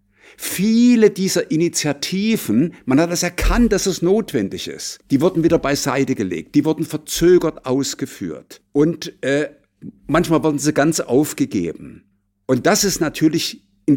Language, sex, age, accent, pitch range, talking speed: German, male, 50-69, German, 115-165 Hz, 135 wpm